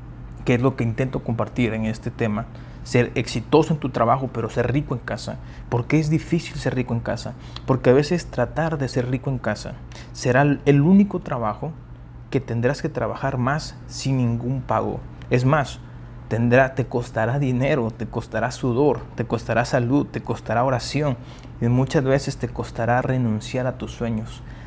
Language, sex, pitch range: Spanish, male, 115-135 Hz